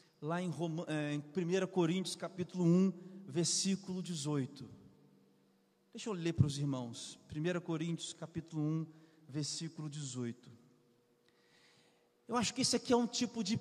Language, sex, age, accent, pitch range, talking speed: Portuguese, male, 40-59, Brazilian, 155-225 Hz, 135 wpm